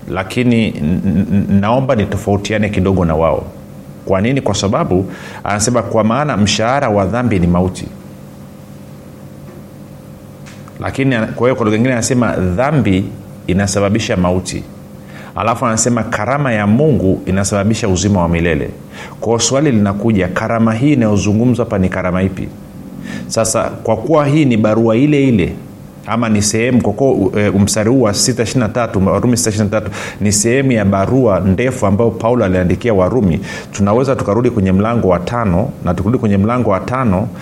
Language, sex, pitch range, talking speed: Swahili, male, 95-115 Hz, 135 wpm